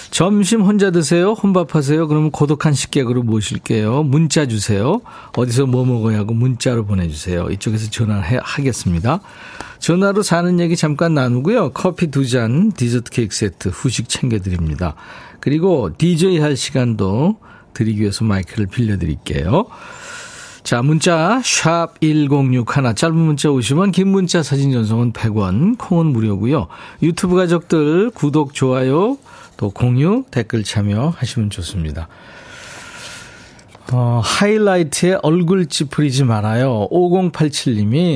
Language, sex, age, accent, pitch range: Korean, male, 40-59, native, 115-170 Hz